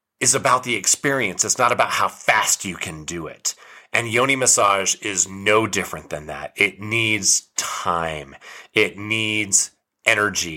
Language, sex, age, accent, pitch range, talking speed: English, male, 30-49, American, 95-115 Hz, 155 wpm